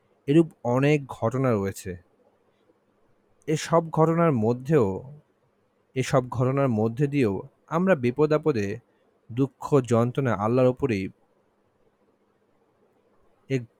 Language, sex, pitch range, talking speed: Bengali, male, 110-145 Hz, 80 wpm